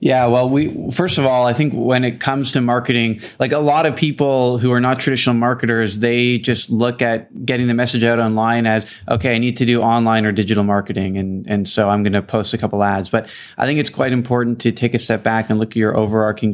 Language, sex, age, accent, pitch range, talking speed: English, male, 20-39, American, 110-125 Hz, 245 wpm